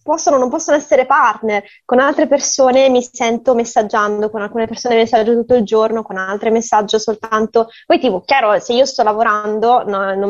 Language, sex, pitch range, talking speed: Italian, female, 200-250 Hz, 185 wpm